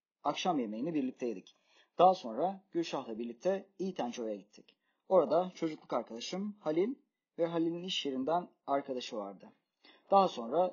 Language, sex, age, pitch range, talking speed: Turkish, male, 40-59, 135-185 Hz, 115 wpm